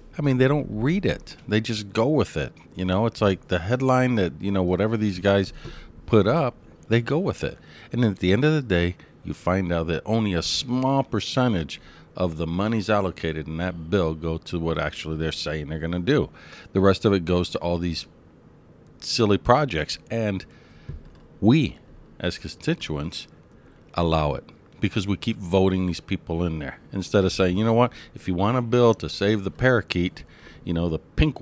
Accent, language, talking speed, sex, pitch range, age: American, English, 200 wpm, male, 80-110 Hz, 50-69